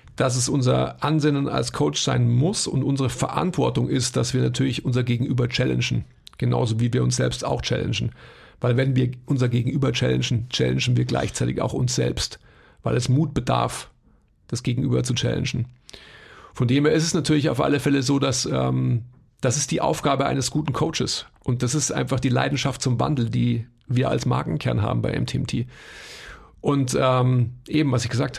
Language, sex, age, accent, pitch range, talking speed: German, male, 50-69, German, 120-140 Hz, 180 wpm